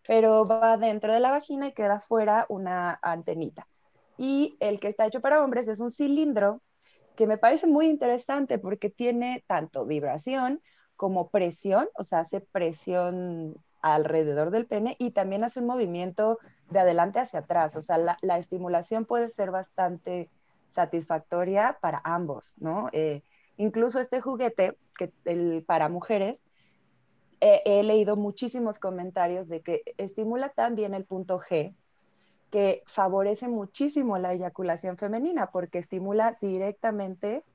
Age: 20-39